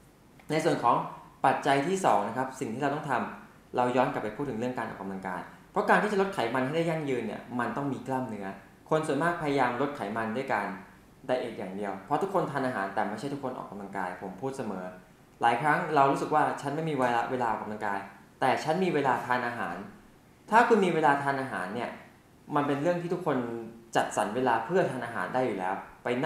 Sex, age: male, 20-39